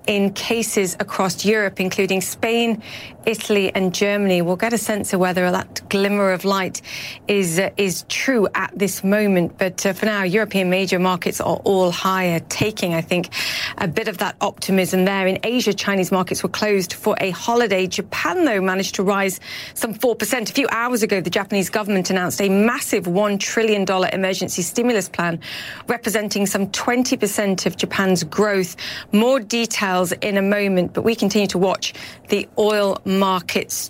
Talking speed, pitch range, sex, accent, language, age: 170 wpm, 185-210 Hz, female, British, English, 40-59